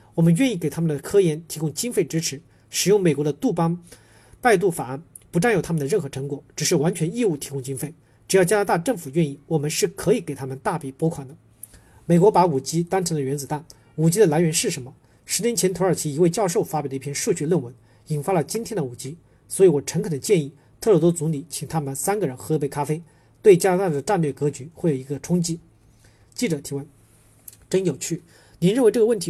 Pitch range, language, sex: 140-185 Hz, Chinese, male